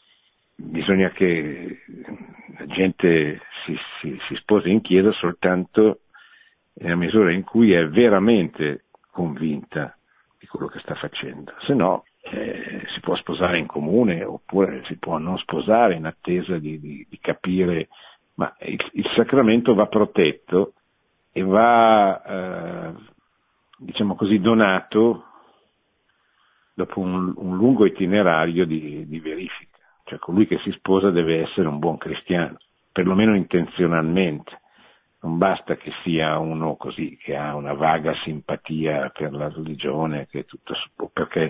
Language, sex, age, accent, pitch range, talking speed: Italian, male, 50-69, native, 80-100 Hz, 130 wpm